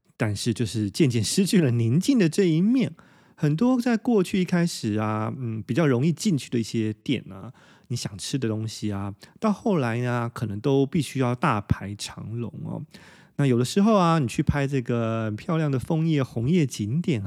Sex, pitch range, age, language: male, 110-160 Hz, 30-49, Chinese